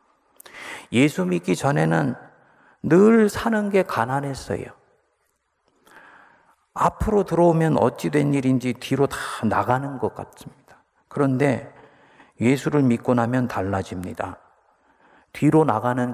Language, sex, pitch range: Korean, male, 120-180 Hz